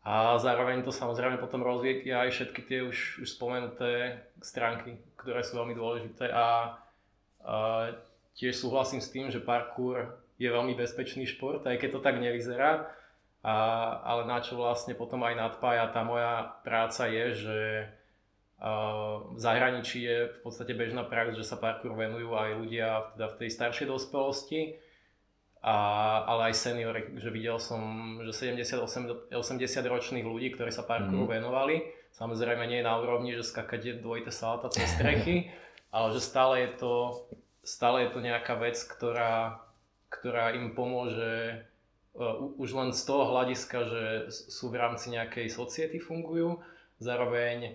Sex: male